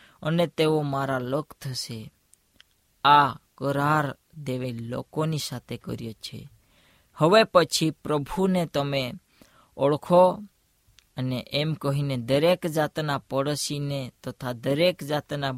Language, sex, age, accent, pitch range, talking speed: Hindi, female, 20-39, native, 130-160 Hz, 70 wpm